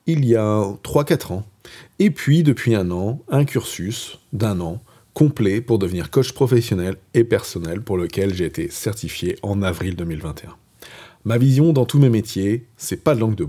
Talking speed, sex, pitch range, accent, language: 180 wpm, male, 95-130 Hz, French, French